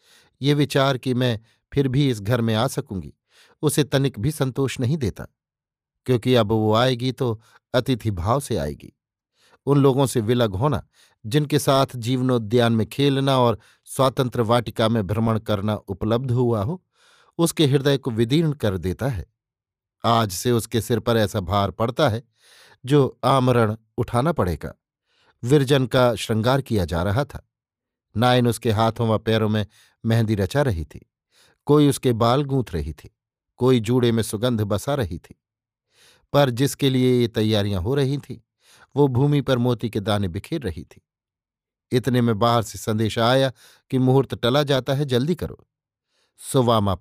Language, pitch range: Hindi, 110-135 Hz